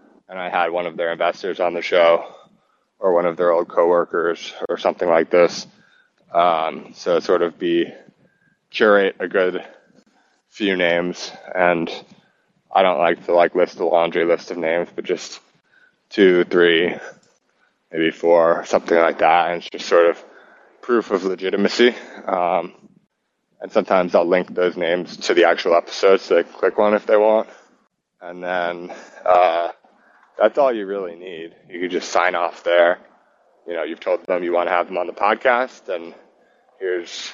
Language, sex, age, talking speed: English, male, 20-39, 170 wpm